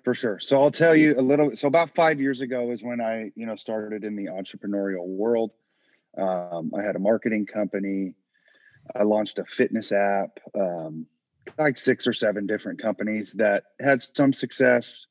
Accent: American